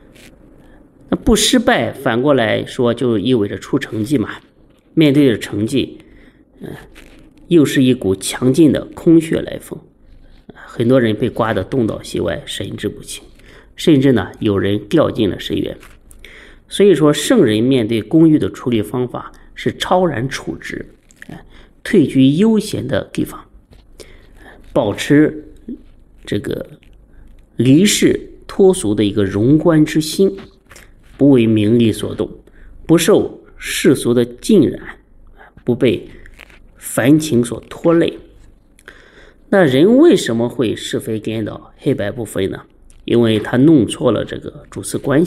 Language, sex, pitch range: Chinese, male, 110-160 Hz